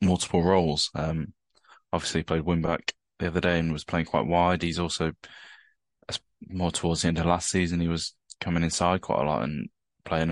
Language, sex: English, male